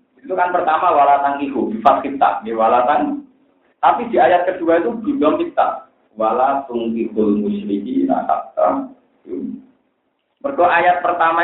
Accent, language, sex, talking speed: native, Indonesian, male, 115 wpm